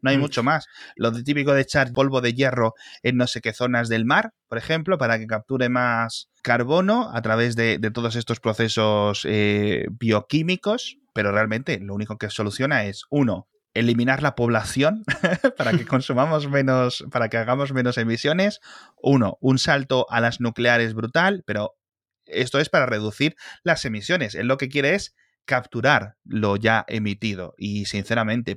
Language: Spanish